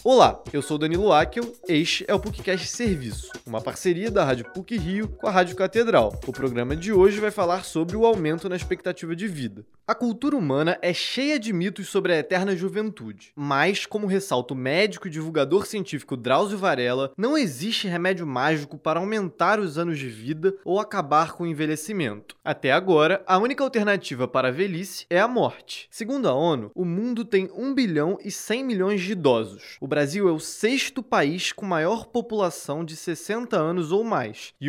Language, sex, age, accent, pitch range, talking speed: Portuguese, male, 20-39, Brazilian, 145-205 Hz, 185 wpm